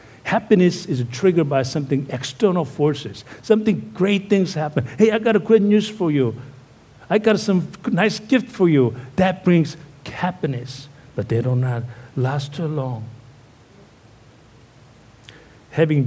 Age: 60-79